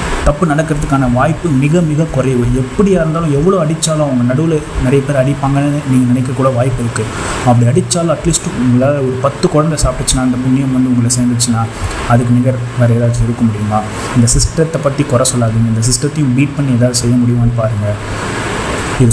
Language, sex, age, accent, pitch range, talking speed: Tamil, male, 30-49, native, 115-135 Hz, 160 wpm